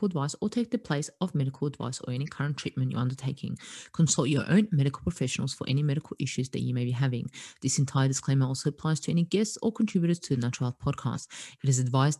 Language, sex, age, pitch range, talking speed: English, female, 30-49, 130-160 Hz, 225 wpm